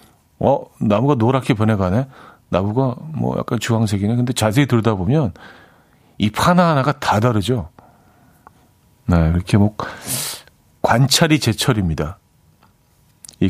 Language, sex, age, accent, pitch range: Korean, male, 50-69, native, 100-135 Hz